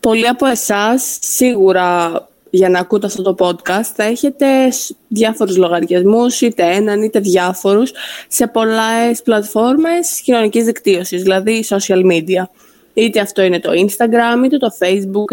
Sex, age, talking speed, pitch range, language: female, 20-39, 135 wpm, 190-235 Hz, Greek